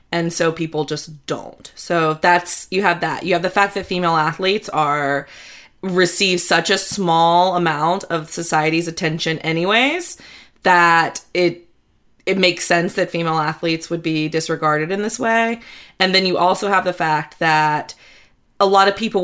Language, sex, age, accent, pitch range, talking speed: English, female, 20-39, American, 160-185 Hz, 165 wpm